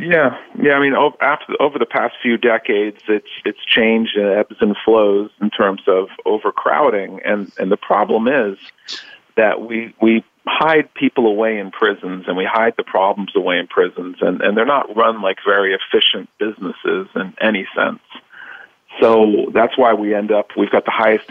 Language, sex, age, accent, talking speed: English, male, 40-59, American, 175 wpm